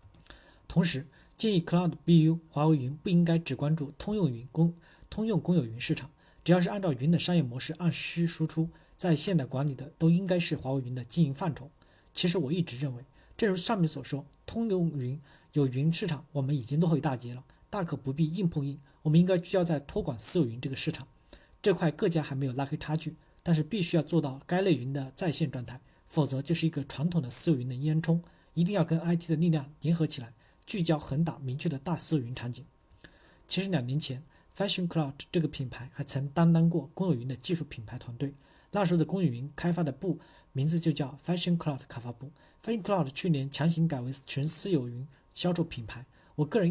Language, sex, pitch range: Chinese, male, 135-170 Hz